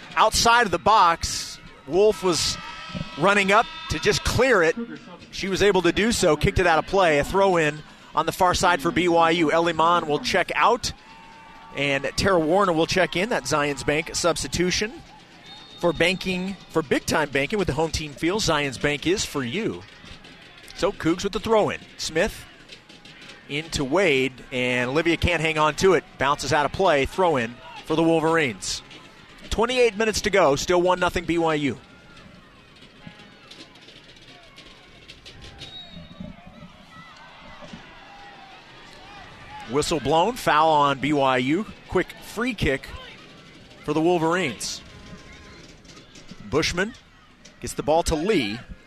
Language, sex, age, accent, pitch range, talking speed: English, male, 30-49, American, 150-190 Hz, 135 wpm